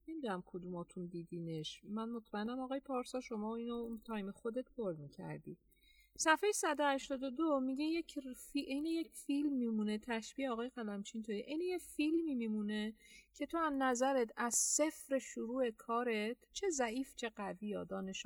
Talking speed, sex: 150 wpm, female